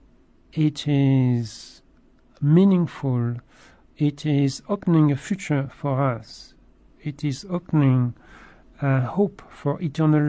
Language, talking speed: English, 100 wpm